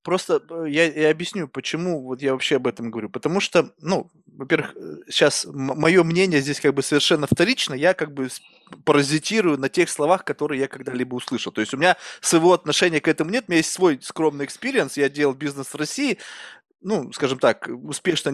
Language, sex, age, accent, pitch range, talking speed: Russian, male, 20-39, native, 140-195 Hz, 195 wpm